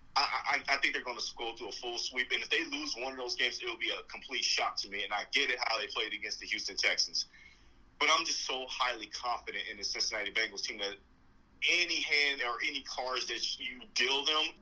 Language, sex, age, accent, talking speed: English, male, 30-49, American, 240 wpm